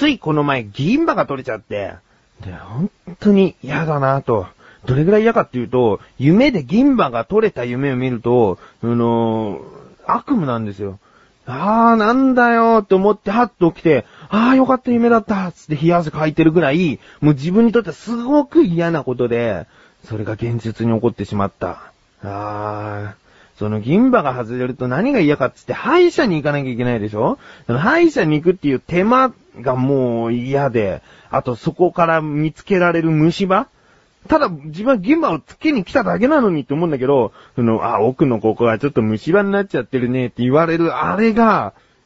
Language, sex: Japanese, male